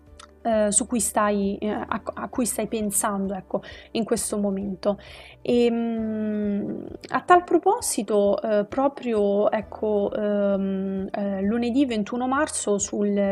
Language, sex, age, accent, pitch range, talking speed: Italian, female, 20-39, native, 205-235 Hz, 120 wpm